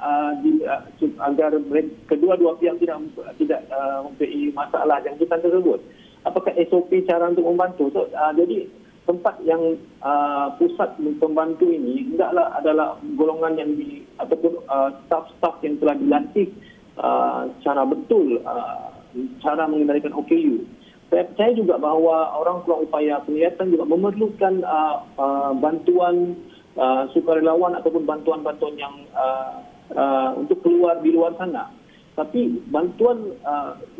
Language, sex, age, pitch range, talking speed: Malay, male, 40-59, 150-195 Hz, 130 wpm